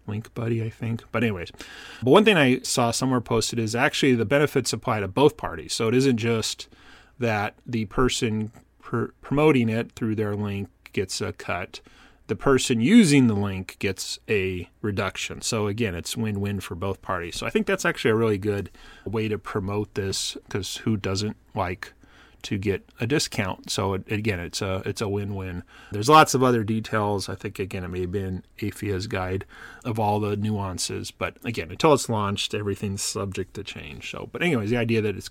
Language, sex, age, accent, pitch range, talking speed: English, male, 30-49, American, 100-120 Hz, 195 wpm